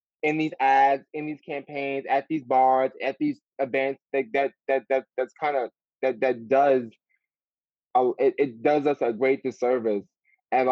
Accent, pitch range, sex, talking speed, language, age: American, 120-140 Hz, male, 175 wpm, English, 20-39